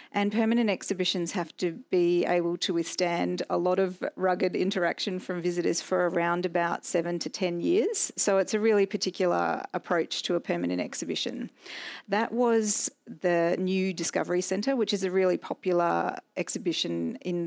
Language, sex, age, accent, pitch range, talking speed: English, female, 40-59, Australian, 170-205 Hz, 160 wpm